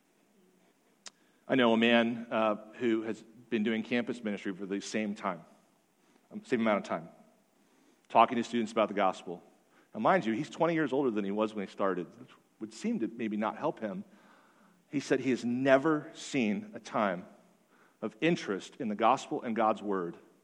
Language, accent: English, American